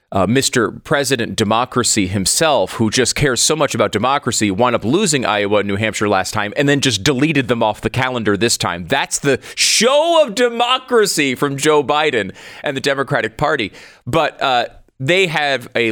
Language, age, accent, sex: English, 30-49, American, male